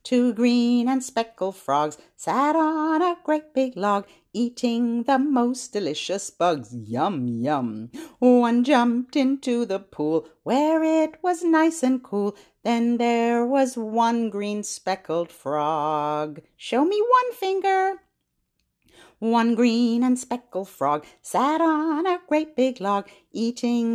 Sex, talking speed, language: female, 130 wpm, English